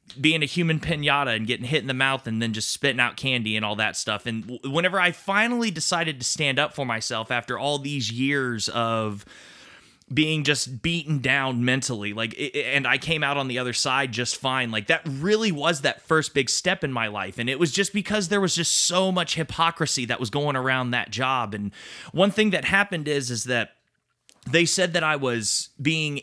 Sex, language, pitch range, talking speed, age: male, English, 125-165 Hz, 215 wpm, 30-49